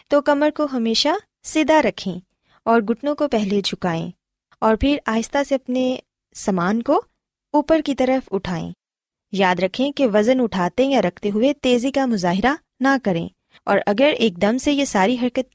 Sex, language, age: female, Urdu, 20-39